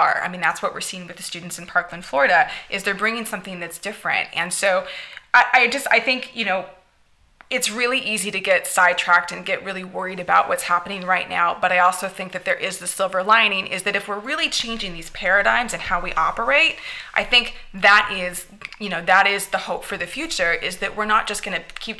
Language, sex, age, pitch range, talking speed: English, female, 20-39, 180-225 Hz, 230 wpm